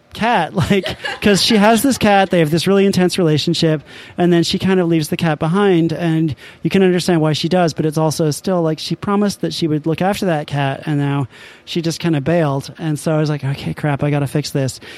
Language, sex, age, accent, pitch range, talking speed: English, male, 30-49, American, 150-180 Hz, 245 wpm